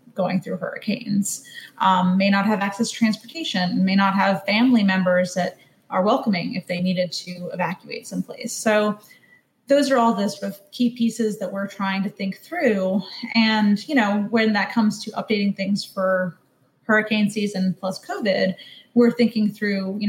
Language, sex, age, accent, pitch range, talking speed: English, female, 30-49, American, 185-215 Hz, 170 wpm